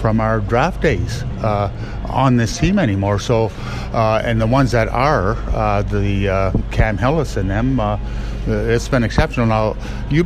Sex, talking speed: male, 170 wpm